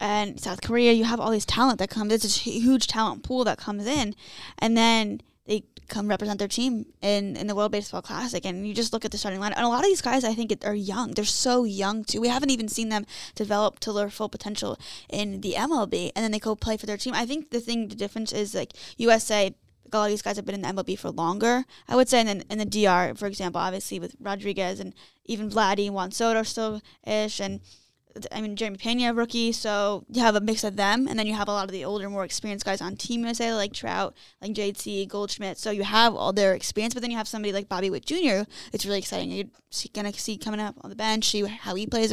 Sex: female